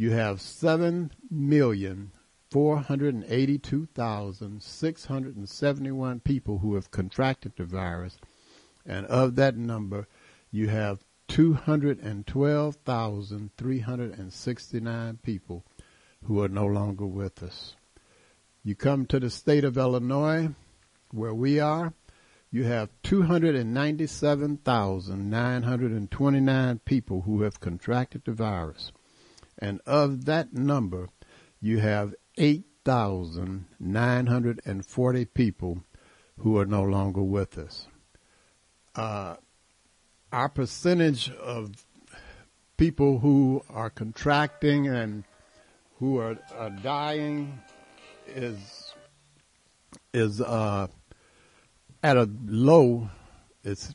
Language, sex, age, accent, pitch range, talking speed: English, male, 60-79, American, 100-140 Hz, 85 wpm